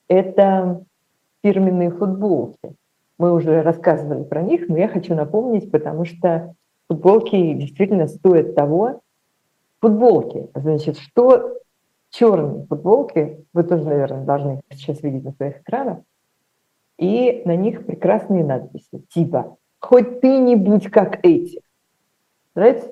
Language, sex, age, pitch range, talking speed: Russian, female, 50-69, 160-195 Hz, 120 wpm